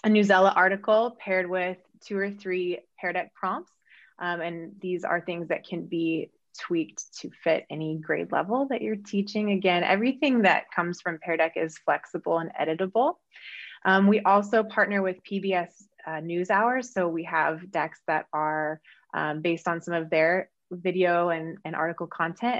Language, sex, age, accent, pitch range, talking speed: English, female, 20-39, American, 165-200 Hz, 170 wpm